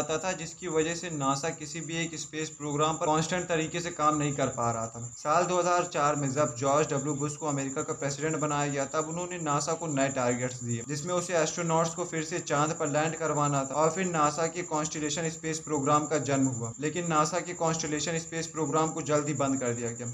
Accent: native